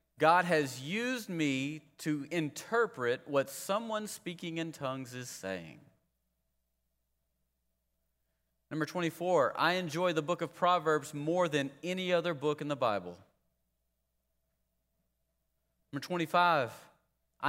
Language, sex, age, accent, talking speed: English, male, 30-49, American, 105 wpm